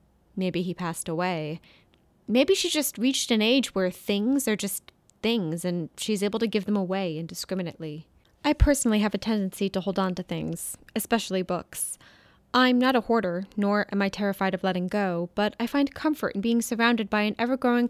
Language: English